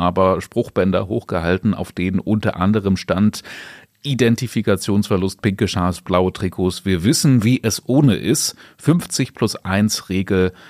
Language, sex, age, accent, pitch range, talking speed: German, male, 30-49, German, 90-115 Hz, 130 wpm